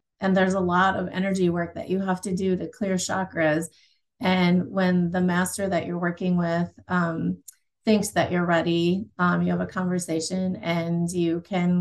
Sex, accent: female, American